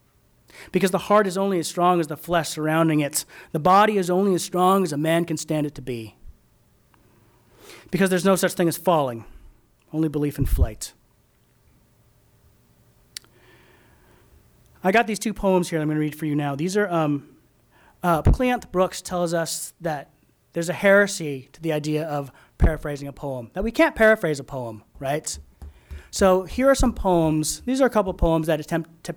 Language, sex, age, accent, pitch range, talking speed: English, male, 30-49, American, 145-185 Hz, 185 wpm